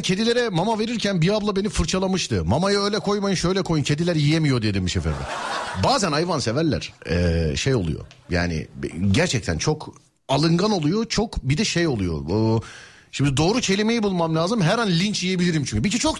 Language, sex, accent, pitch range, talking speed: Turkish, male, native, 110-180 Hz, 170 wpm